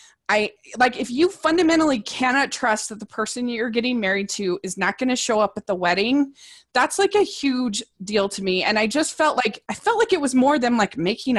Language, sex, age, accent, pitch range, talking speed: English, female, 20-39, American, 210-285 Hz, 230 wpm